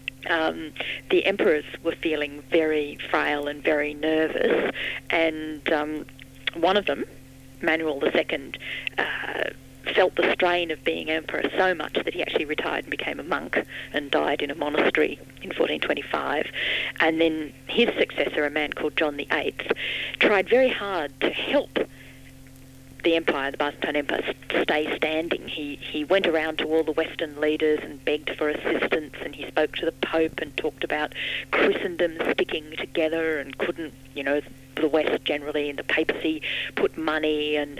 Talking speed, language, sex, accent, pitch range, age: 160 wpm, English, female, Australian, 145-165 Hz, 40-59